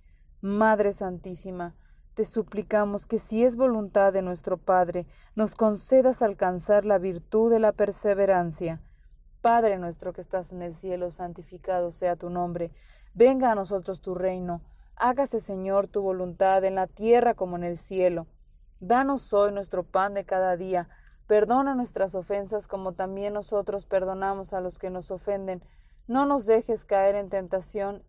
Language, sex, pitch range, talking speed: Spanish, female, 185-215 Hz, 150 wpm